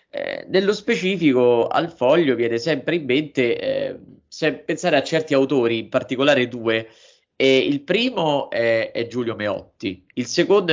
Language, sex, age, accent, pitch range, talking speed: Italian, male, 20-39, native, 115-155 Hz, 145 wpm